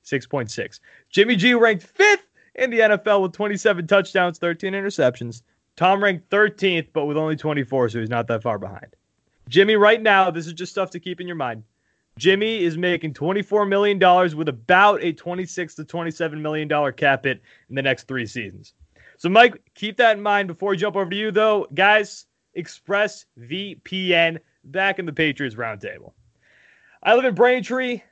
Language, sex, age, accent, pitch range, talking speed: English, male, 20-39, American, 160-205 Hz, 170 wpm